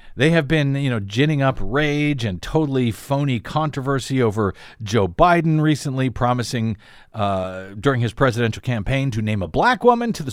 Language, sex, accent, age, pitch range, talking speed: English, male, American, 50-69, 115-170 Hz, 170 wpm